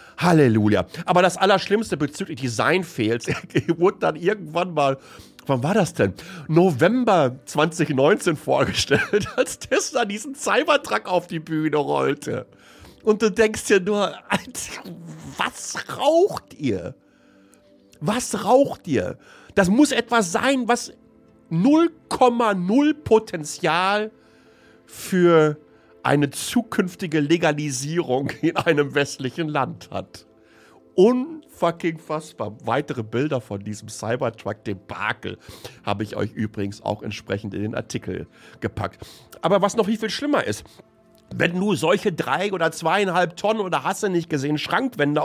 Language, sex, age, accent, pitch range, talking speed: German, male, 50-69, German, 145-210 Hz, 120 wpm